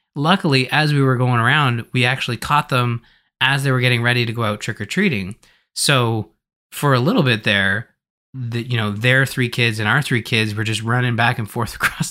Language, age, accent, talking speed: English, 20-39, American, 220 wpm